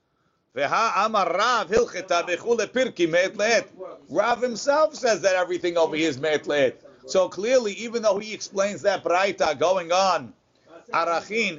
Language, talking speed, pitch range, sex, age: English, 110 wpm, 160-225 Hz, male, 50-69